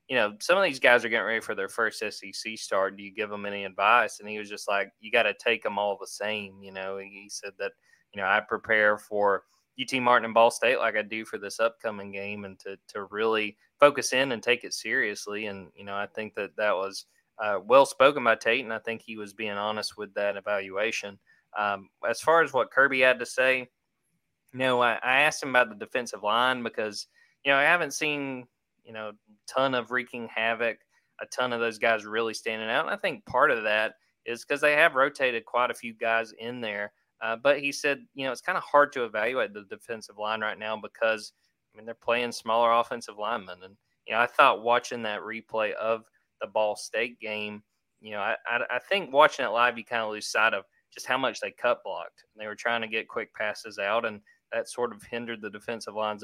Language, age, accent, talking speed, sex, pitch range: English, 20-39, American, 235 wpm, male, 105-125 Hz